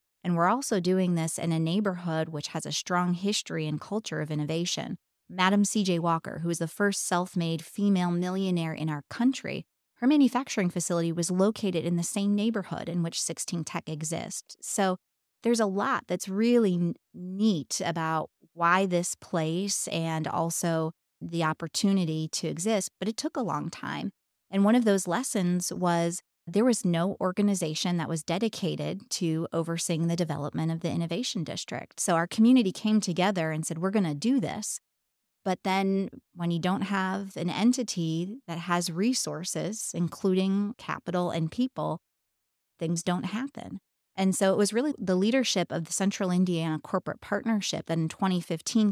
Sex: female